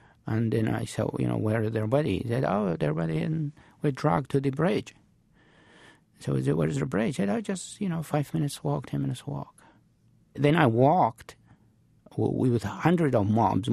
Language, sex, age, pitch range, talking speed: English, male, 50-69, 105-140 Hz, 205 wpm